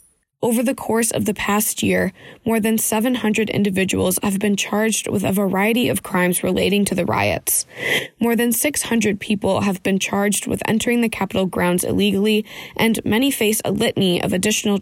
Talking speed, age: 175 wpm, 20-39